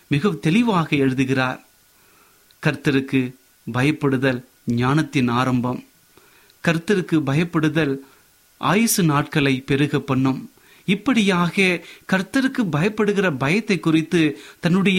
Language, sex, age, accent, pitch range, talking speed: Tamil, male, 30-49, native, 145-190 Hz, 60 wpm